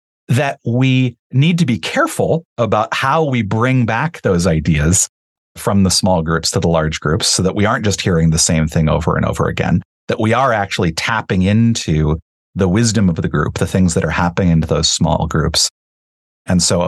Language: English